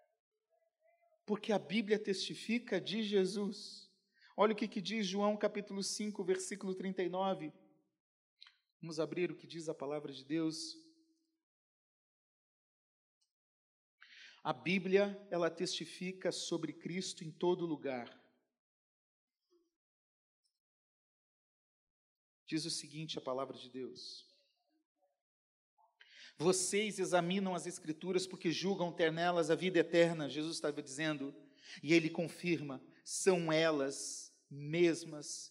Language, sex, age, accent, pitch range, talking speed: Portuguese, male, 40-59, Brazilian, 160-215 Hz, 105 wpm